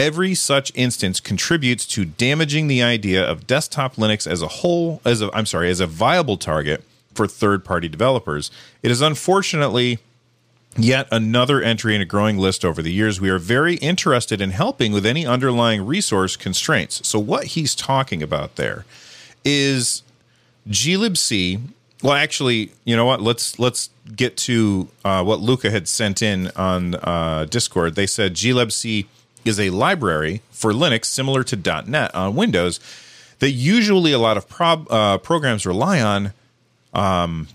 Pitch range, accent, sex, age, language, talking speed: 100-130 Hz, American, male, 40-59, English, 160 wpm